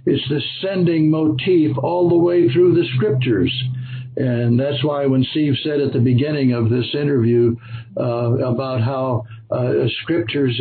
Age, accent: 60-79, American